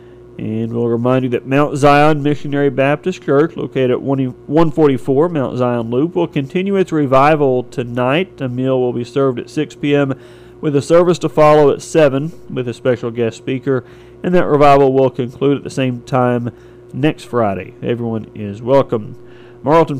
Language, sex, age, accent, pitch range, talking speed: English, male, 40-59, American, 120-145 Hz, 170 wpm